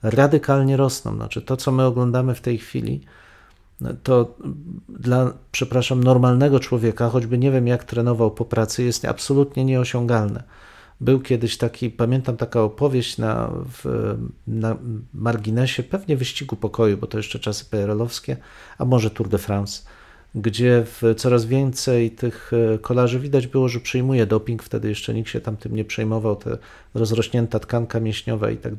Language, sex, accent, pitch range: Polish, male, native, 110-135 Hz